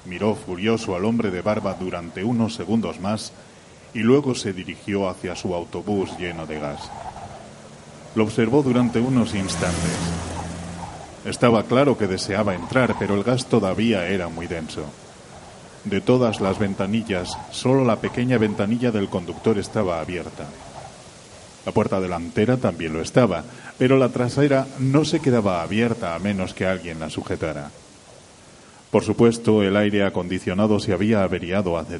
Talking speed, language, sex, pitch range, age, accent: 145 wpm, Spanish, male, 90-115 Hz, 40-59, Spanish